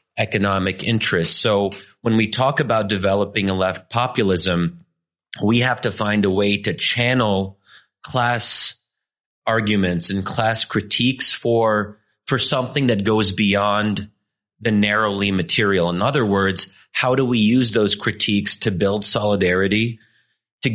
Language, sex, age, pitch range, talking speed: English, male, 30-49, 100-120 Hz, 135 wpm